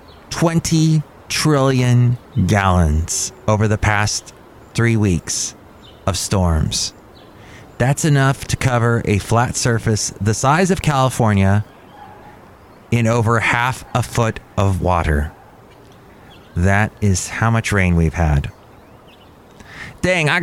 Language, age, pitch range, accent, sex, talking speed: English, 30-49, 95-135 Hz, American, male, 110 wpm